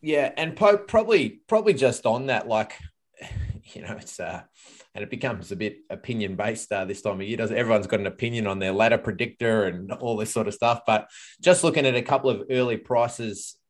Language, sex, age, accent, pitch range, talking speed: English, male, 20-39, Australian, 105-120 Hz, 215 wpm